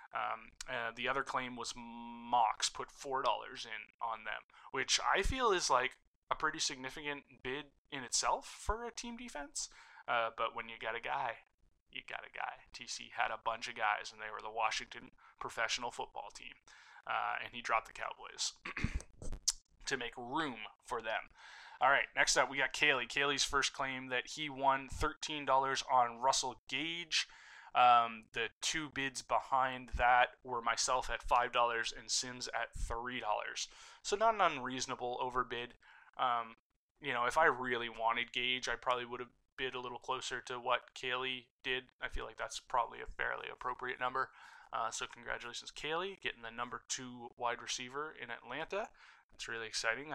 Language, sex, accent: English, male, American